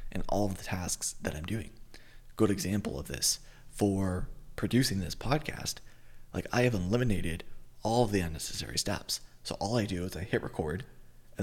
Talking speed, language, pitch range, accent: 180 wpm, English, 90-115 Hz, American